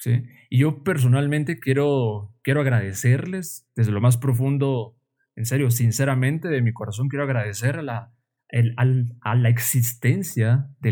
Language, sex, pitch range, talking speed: Spanish, male, 115-135 Hz, 150 wpm